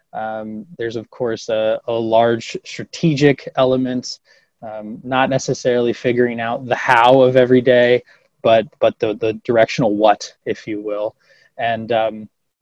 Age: 20-39